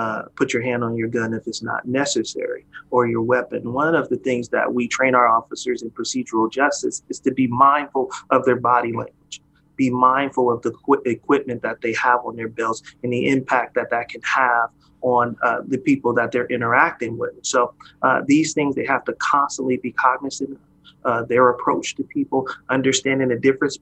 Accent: American